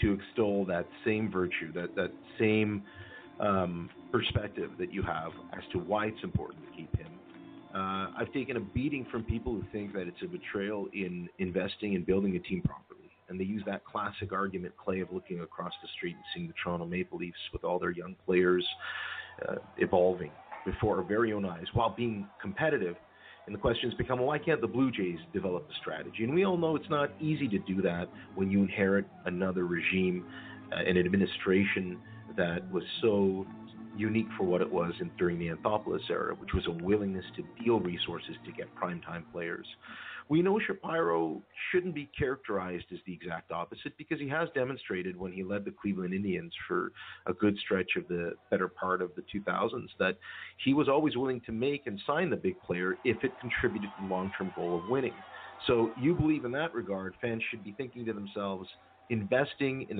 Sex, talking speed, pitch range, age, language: male, 195 wpm, 95-125 Hz, 40-59, English